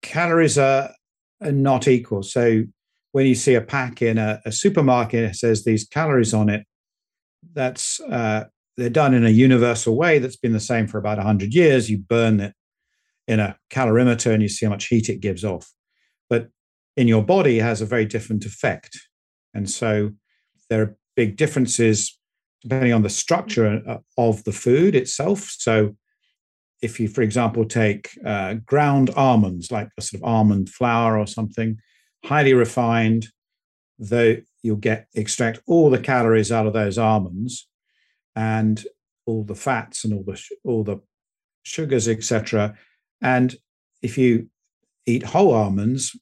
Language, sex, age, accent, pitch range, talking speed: English, male, 50-69, British, 110-125 Hz, 155 wpm